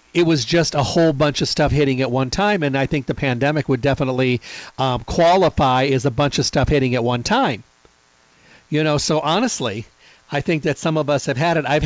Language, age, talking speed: English, 40-59, 225 wpm